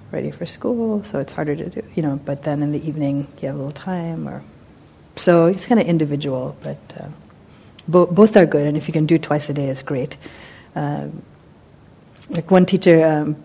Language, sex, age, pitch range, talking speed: English, female, 40-59, 145-175 Hz, 210 wpm